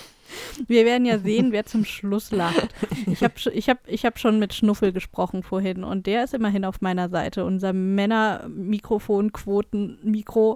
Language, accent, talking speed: German, German, 160 wpm